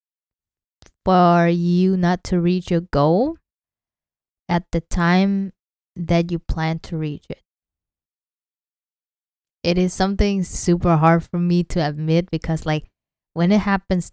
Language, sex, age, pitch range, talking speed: English, female, 20-39, 160-185 Hz, 125 wpm